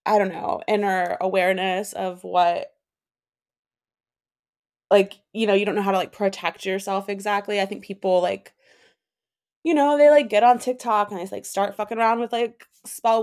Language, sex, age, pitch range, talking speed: English, female, 20-39, 180-210 Hz, 175 wpm